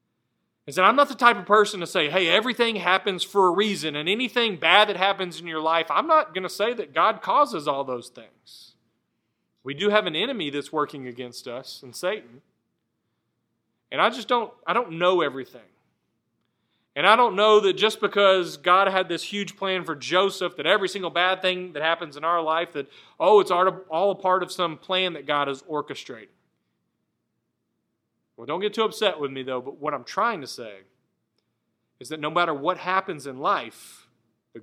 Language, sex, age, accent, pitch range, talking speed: English, male, 40-59, American, 145-190 Hz, 190 wpm